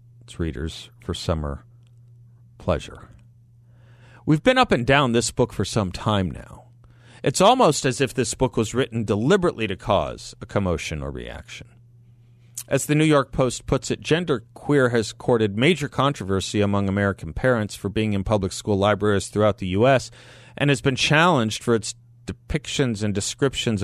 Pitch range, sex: 100-130 Hz, male